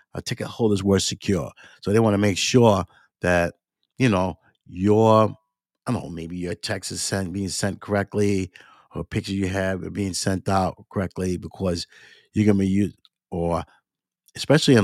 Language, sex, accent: English, male, American